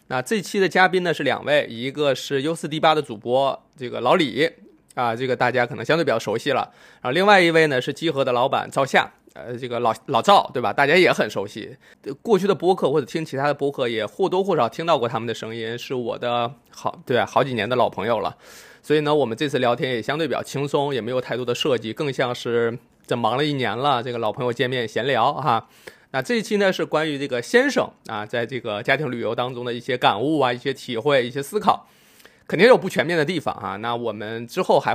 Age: 20-39